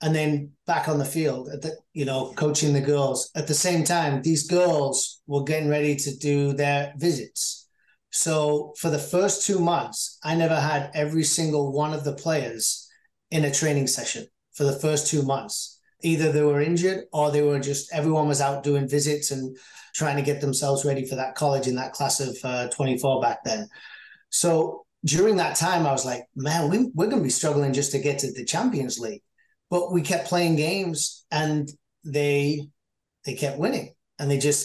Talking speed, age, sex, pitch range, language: 190 wpm, 30-49, male, 140-160 Hz, English